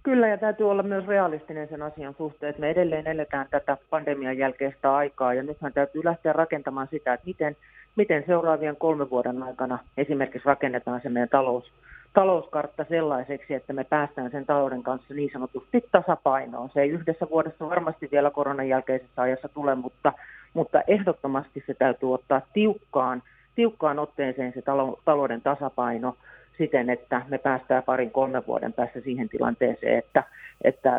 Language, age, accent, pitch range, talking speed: Finnish, 40-59, native, 130-155 Hz, 155 wpm